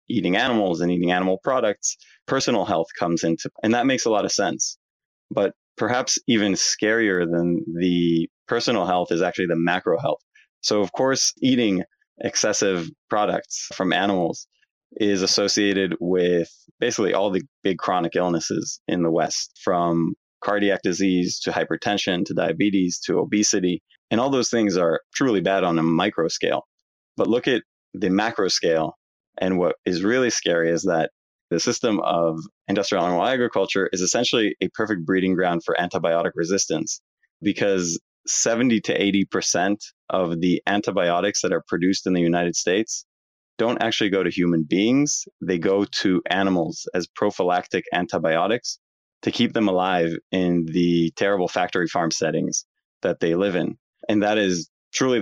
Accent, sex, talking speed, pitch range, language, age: American, male, 155 wpm, 85-100 Hz, English, 20-39